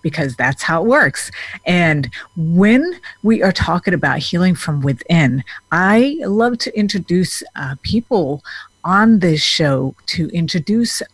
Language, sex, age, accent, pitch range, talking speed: English, female, 50-69, American, 145-200 Hz, 135 wpm